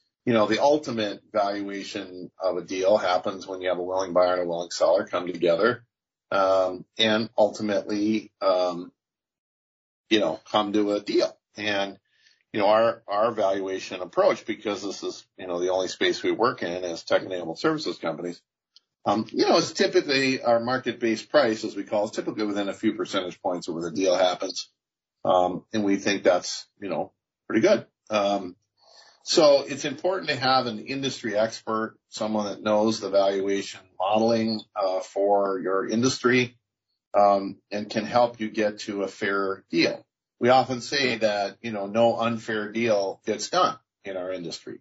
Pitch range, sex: 95-115 Hz, male